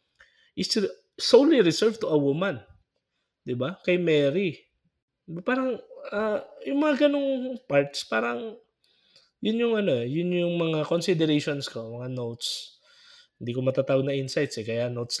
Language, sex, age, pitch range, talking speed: Filipino, male, 20-39, 125-170 Hz, 135 wpm